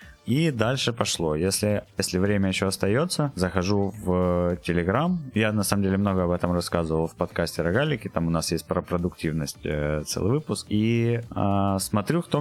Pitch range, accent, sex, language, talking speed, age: 85-110 Hz, native, male, Ukrainian, 165 wpm, 20-39